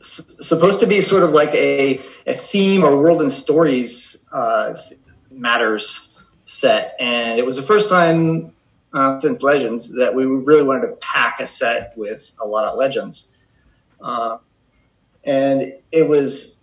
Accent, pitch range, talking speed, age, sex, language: American, 135-170 Hz, 160 wpm, 30-49, male, English